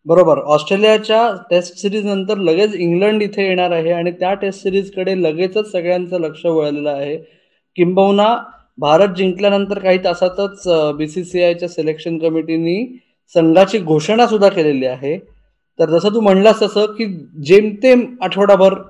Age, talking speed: 20-39, 125 wpm